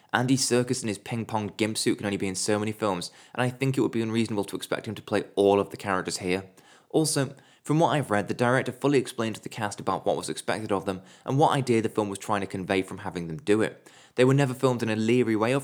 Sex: male